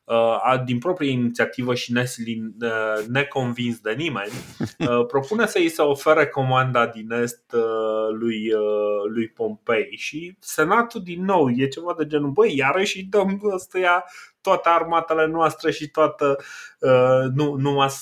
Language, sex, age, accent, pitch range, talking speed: Romanian, male, 20-39, native, 110-140 Hz, 120 wpm